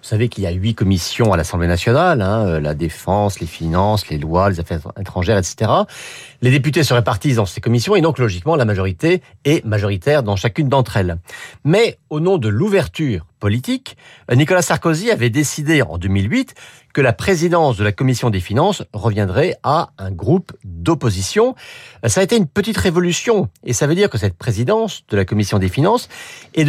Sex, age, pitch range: male, 40-59, 105-160 Hz